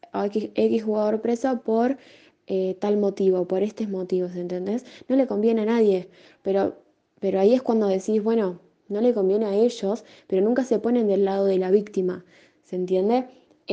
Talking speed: 180 wpm